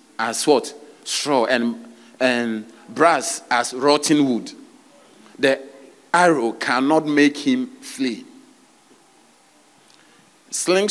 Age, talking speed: 50-69, 90 wpm